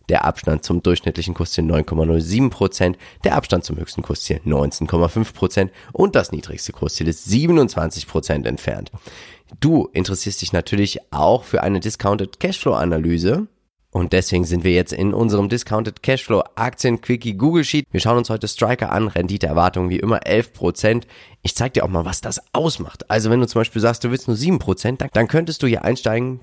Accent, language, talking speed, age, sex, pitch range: German, German, 170 wpm, 30-49, male, 90-120 Hz